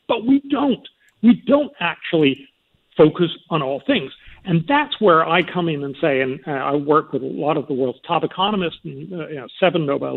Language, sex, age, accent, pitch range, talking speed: English, male, 50-69, American, 160-230 Hz, 210 wpm